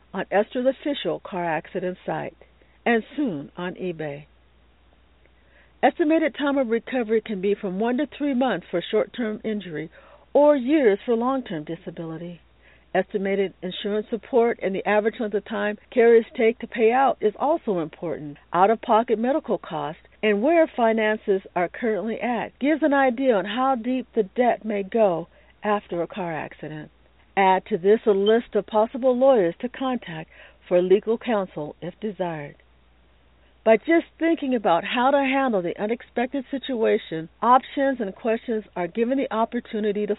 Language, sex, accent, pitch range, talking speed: English, female, American, 180-250 Hz, 150 wpm